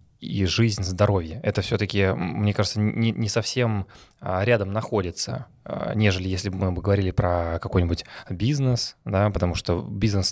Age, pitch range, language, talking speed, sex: 20-39, 90-110 Hz, Russian, 140 wpm, male